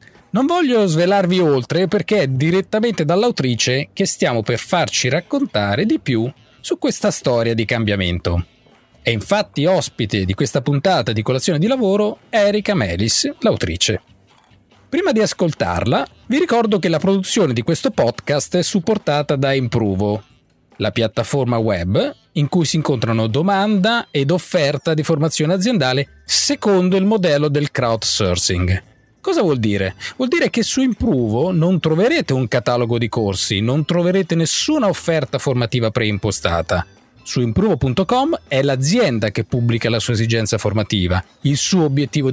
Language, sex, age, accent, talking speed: Italian, male, 30-49, native, 140 wpm